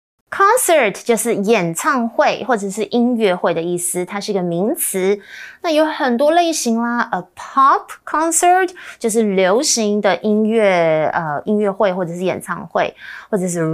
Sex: female